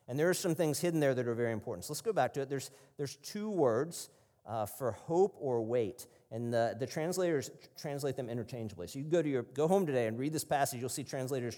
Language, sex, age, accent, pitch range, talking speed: English, male, 40-59, American, 110-150 Hz, 260 wpm